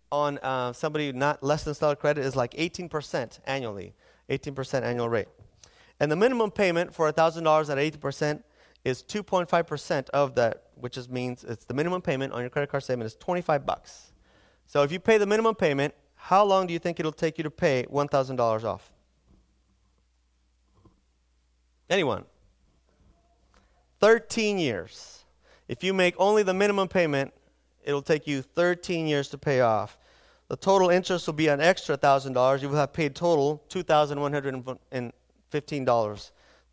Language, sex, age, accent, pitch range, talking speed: English, male, 30-49, American, 130-170 Hz, 155 wpm